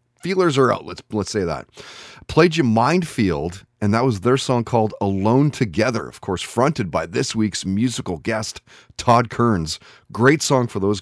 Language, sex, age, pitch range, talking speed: English, male, 30-49, 100-130 Hz, 175 wpm